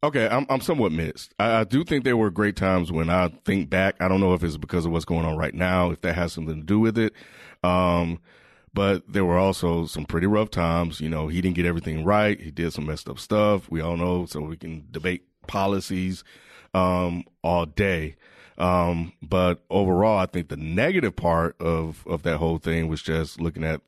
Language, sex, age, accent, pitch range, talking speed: English, male, 30-49, American, 80-95 Hz, 220 wpm